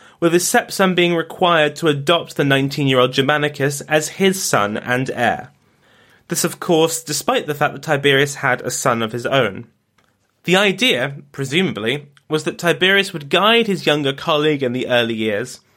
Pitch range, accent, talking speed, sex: 135-180 Hz, British, 170 wpm, male